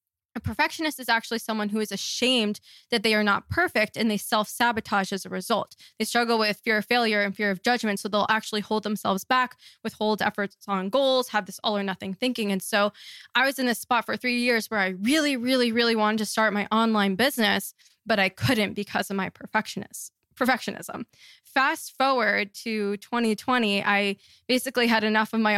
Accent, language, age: American, English, 20-39